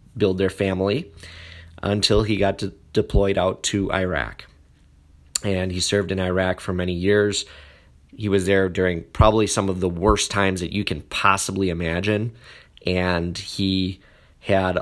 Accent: American